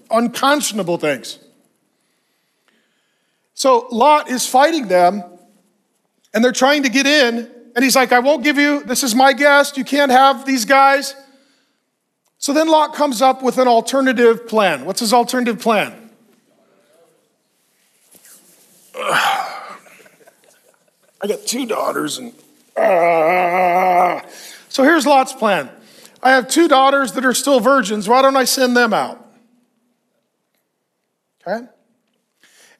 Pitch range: 220-275 Hz